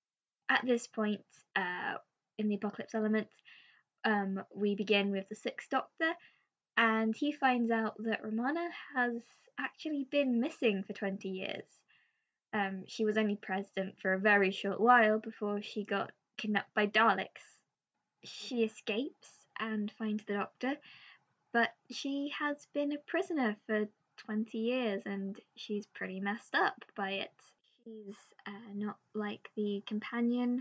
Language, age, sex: English, 10-29, female